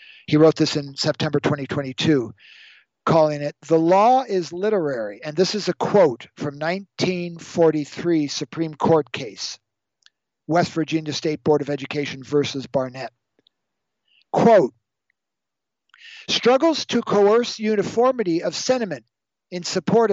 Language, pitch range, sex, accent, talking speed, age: English, 160-220 Hz, male, American, 115 wpm, 50-69